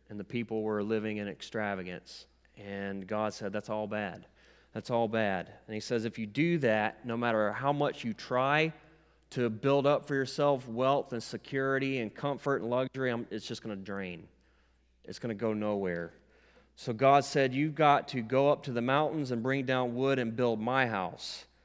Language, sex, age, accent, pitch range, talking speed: English, male, 30-49, American, 110-135 Hz, 195 wpm